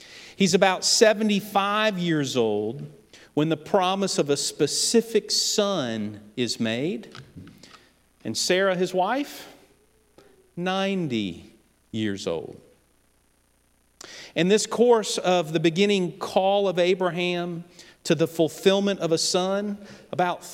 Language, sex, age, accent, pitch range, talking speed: English, male, 50-69, American, 140-200 Hz, 110 wpm